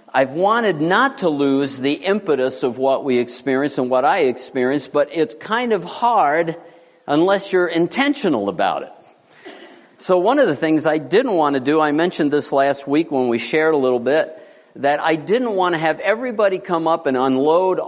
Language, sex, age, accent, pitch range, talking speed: English, male, 50-69, American, 125-170 Hz, 190 wpm